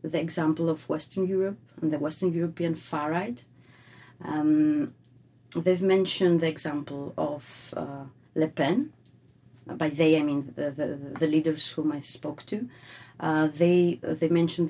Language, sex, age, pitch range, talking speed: English, female, 30-49, 140-170 Hz, 150 wpm